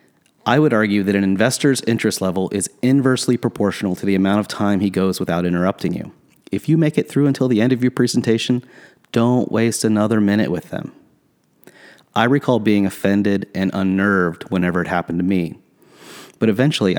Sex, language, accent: male, English, American